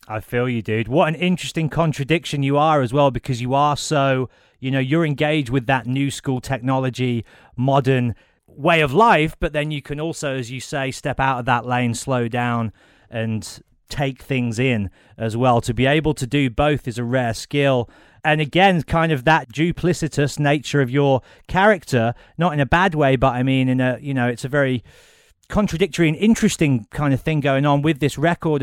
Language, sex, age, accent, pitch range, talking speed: English, male, 30-49, British, 125-150 Hz, 200 wpm